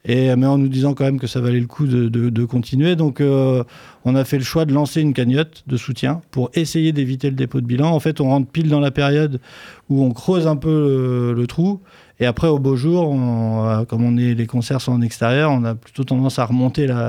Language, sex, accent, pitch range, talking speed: French, male, French, 120-140 Hz, 240 wpm